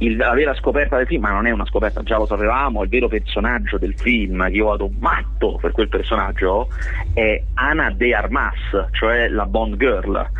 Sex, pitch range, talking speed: male, 105-145 Hz, 195 wpm